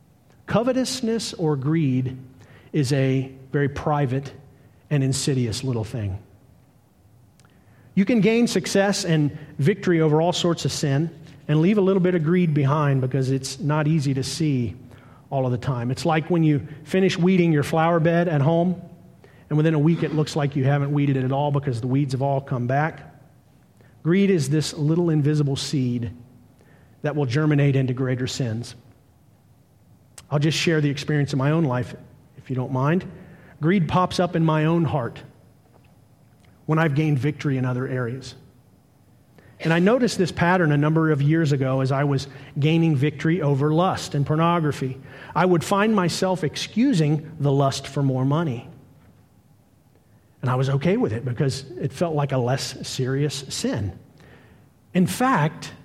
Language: English